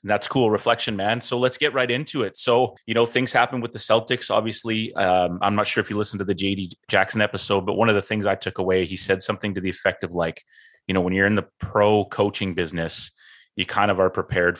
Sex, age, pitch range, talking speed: male, 30-49, 95-110 Hz, 250 wpm